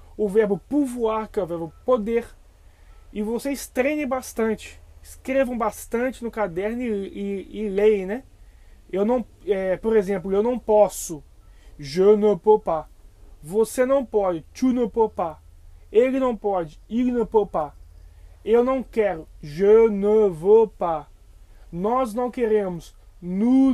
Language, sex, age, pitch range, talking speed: Portuguese, male, 20-39, 180-230 Hz, 145 wpm